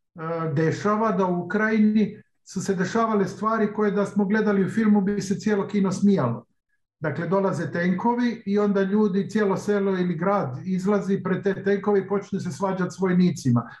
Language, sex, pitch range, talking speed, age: Croatian, male, 170-200 Hz, 170 wpm, 50-69